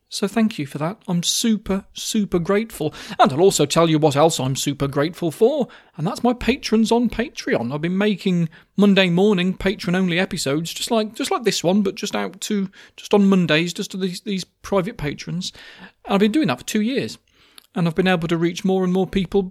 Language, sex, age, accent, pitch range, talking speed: English, male, 30-49, British, 170-225 Hz, 220 wpm